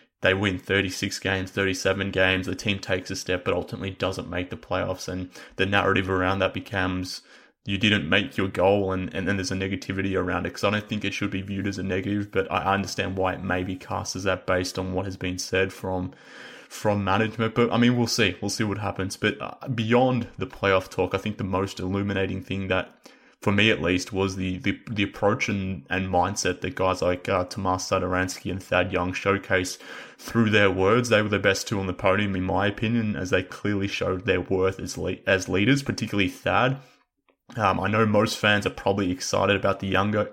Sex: male